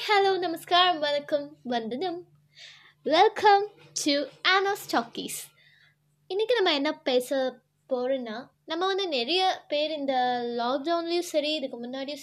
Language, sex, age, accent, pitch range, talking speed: Tamil, female, 20-39, native, 215-330 Hz, 100 wpm